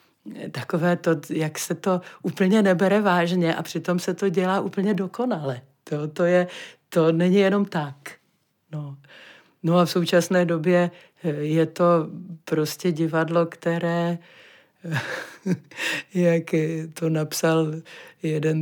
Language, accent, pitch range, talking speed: Czech, native, 150-185 Hz, 115 wpm